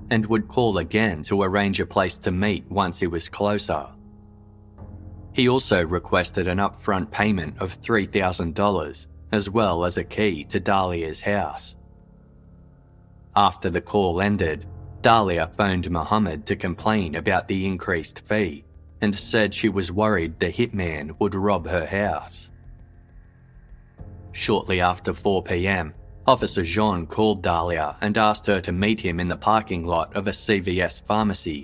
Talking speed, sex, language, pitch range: 140 wpm, male, English, 90-105 Hz